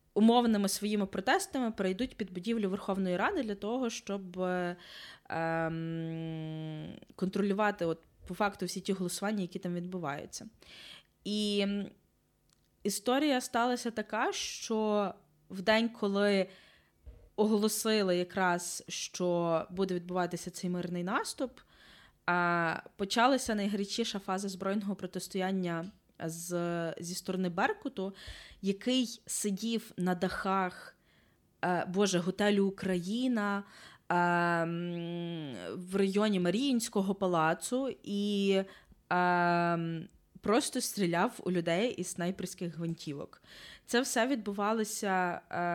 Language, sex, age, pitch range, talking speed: Ukrainian, female, 20-39, 175-210 Hz, 90 wpm